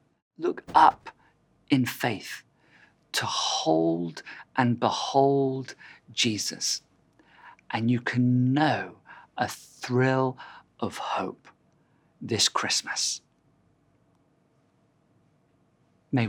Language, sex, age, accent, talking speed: English, male, 50-69, British, 75 wpm